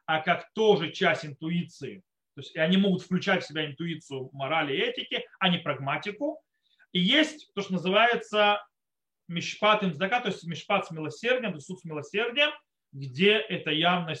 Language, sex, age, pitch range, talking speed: Russian, male, 30-49, 160-235 Hz, 165 wpm